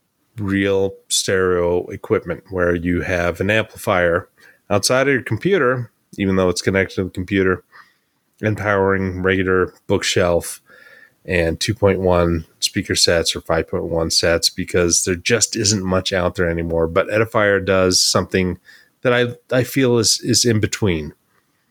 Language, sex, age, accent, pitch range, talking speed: English, male, 30-49, American, 90-110 Hz, 140 wpm